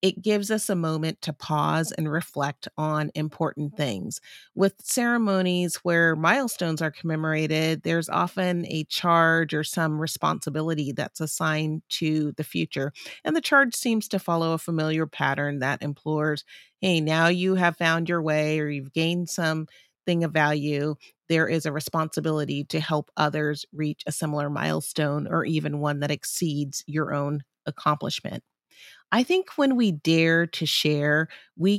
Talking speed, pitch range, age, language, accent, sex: 155 wpm, 150-180 Hz, 30-49, English, American, female